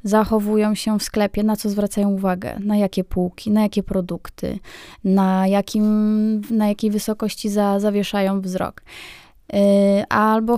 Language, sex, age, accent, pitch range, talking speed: Polish, female, 20-39, native, 200-230 Hz, 130 wpm